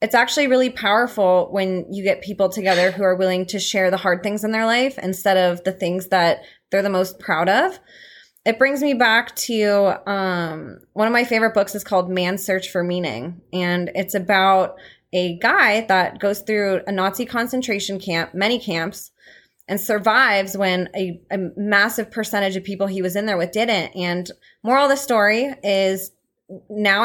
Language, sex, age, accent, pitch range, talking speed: English, female, 20-39, American, 190-230 Hz, 185 wpm